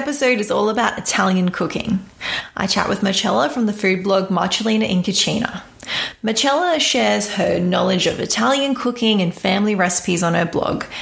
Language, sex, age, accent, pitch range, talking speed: English, female, 20-39, Australian, 175-240 Hz, 170 wpm